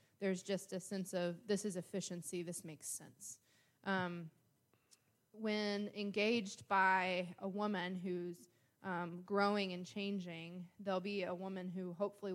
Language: English